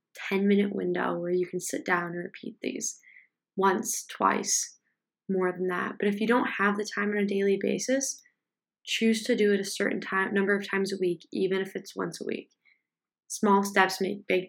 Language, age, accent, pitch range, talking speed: English, 20-39, American, 185-210 Hz, 200 wpm